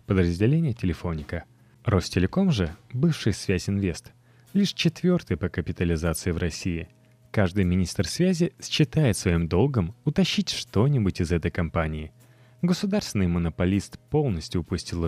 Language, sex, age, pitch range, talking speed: Russian, male, 20-39, 85-145 Hz, 110 wpm